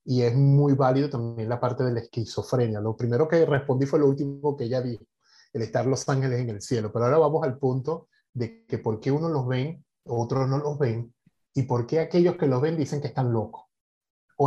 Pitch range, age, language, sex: 115-140 Hz, 30-49, Spanish, male